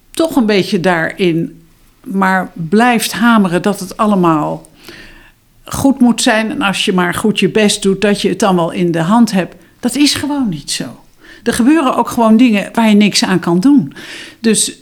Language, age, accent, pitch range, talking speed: Dutch, 60-79, Dutch, 175-235 Hz, 190 wpm